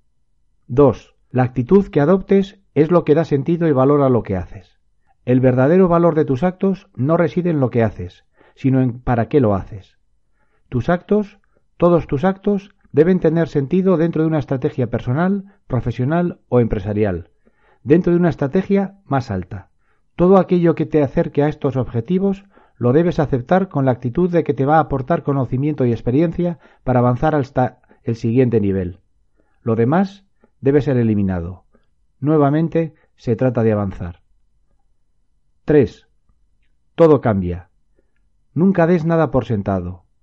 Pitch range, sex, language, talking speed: 120-175 Hz, male, Spanish, 155 wpm